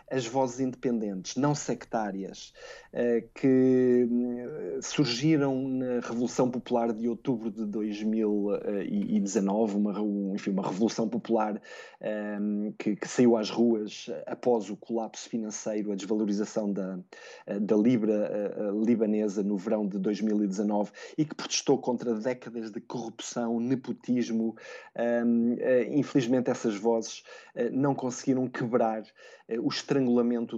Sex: male